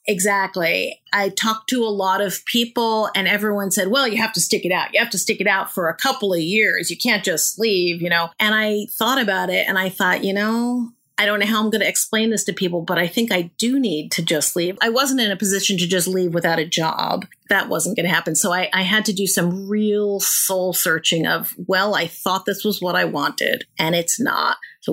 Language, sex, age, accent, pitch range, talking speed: English, female, 40-59, American, 180-210 Hz, 250 wpm